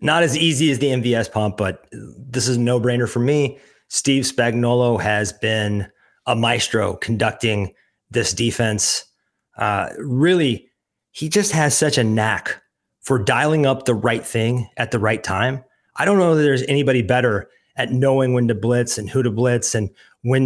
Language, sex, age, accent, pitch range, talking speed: English, male, 30-49, American, 110-135 Hz, 175 wpm